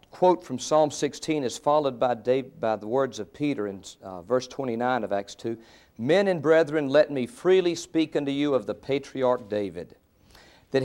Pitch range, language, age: 125-185 Hz, English, 50-69